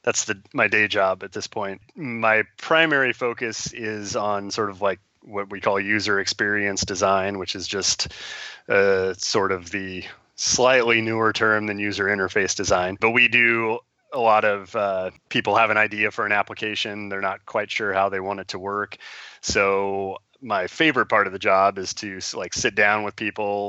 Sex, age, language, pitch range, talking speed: male, 30-49, English, 95-110 Hz, 185 wpm